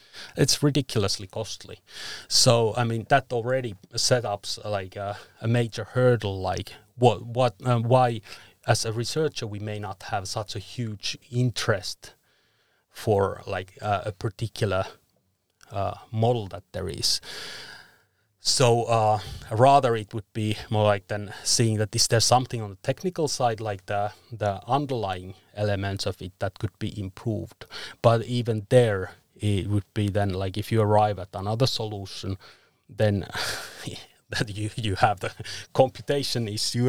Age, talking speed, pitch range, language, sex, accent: 30-49, 150 wpm, 105-125 Hz, English, male, Finnish